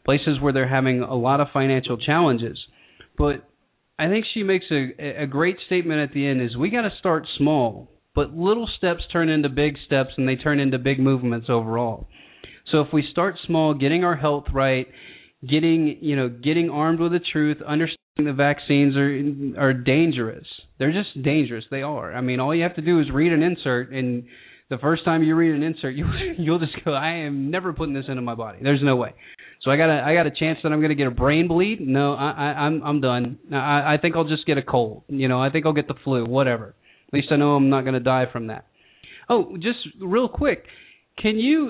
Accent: American